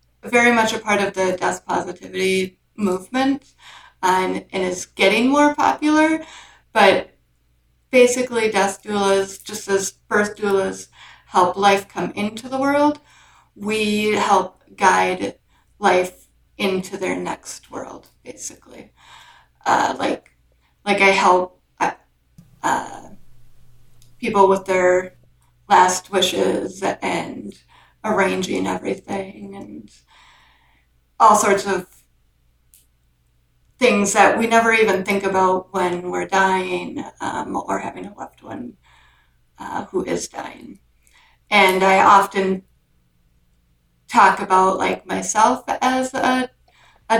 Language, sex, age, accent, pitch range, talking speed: English, female, 30-49, American, 180-210 Hz, 110 wpm